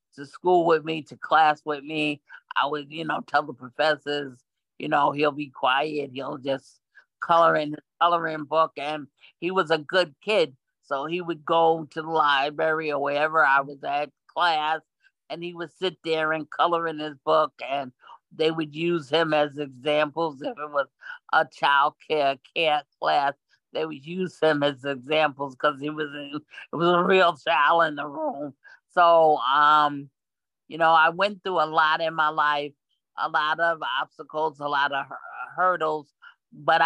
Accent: American